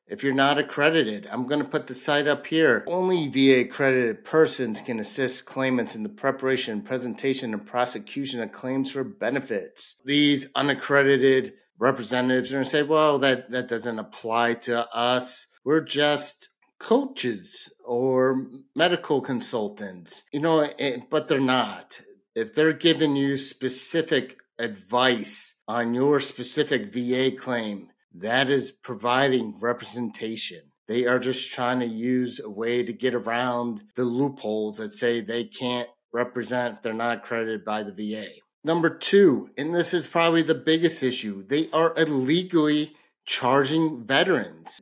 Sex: male